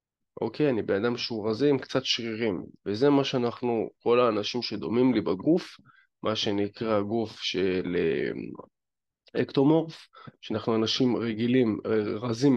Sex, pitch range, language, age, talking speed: male, 110-125 Hz, Hebrew, 20-39, 125 wpm